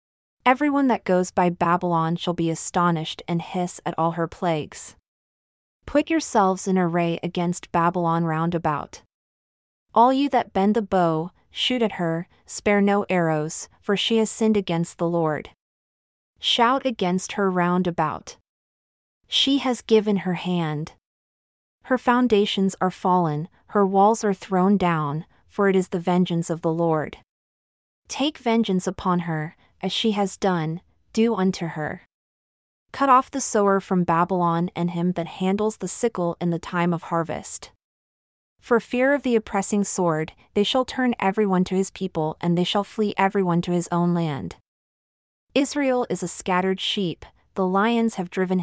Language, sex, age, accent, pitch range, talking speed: English, female, 30-49, American, 170-210 Hz, 160 wpm